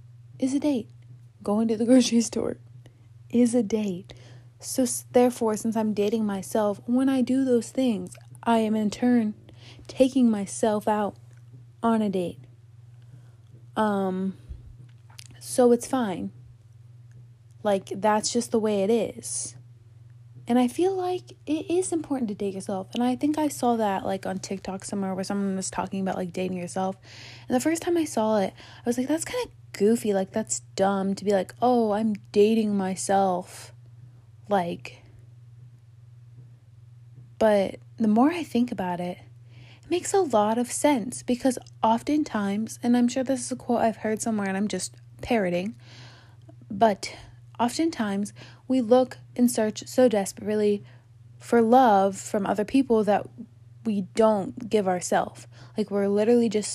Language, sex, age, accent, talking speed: English, female, 20-39, American, 155 wpm